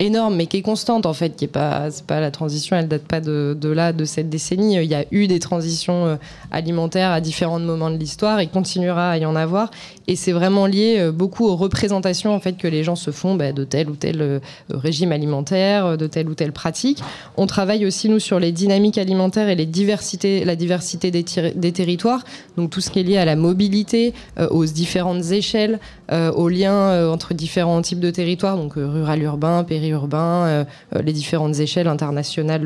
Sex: female